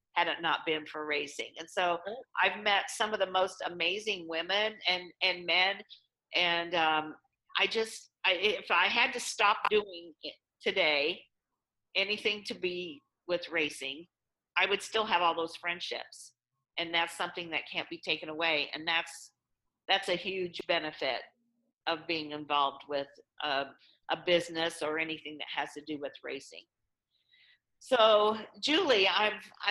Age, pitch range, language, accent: 50-69, 165-210 Hz, English, American